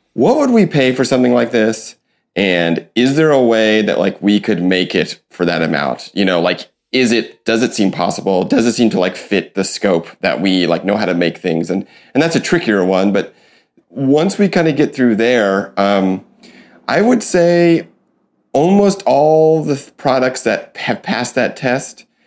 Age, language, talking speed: 30-49, English, 200 wpm